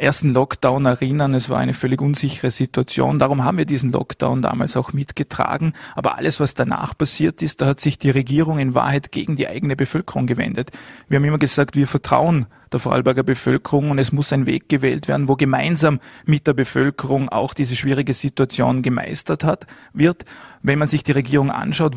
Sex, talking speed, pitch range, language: male, 190 wpm, 130-150 Hz, German